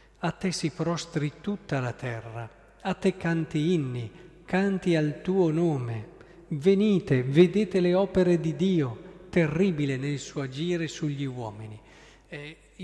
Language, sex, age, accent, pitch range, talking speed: Italian, male, 40-59, native, 135-175 Hz, 130 wpm